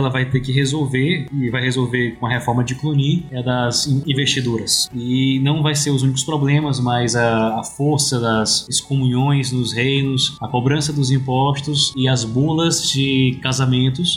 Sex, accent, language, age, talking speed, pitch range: male, Brazilian, Portuguese, 20-39, 170 wpm, 125-145 Hz